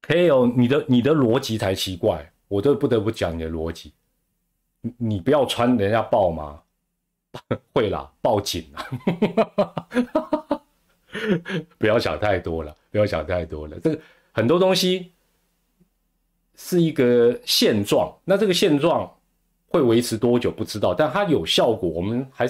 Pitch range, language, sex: 100-150 Hz, Chinese, male